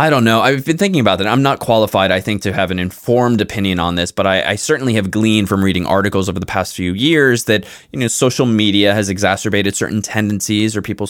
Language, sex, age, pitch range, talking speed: English, male, 20-39, 95-115 Hz, 245 wpm